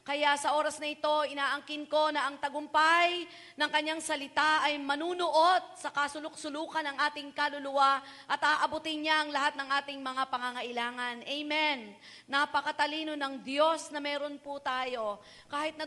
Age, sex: 40-59, female